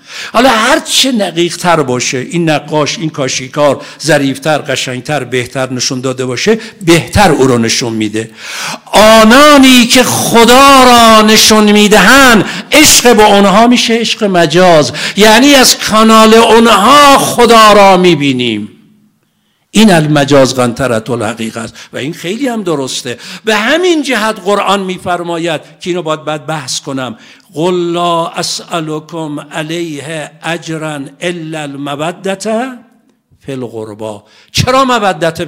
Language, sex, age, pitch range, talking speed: Persian, male, 60-79, 140-220 Hz, 115 wpm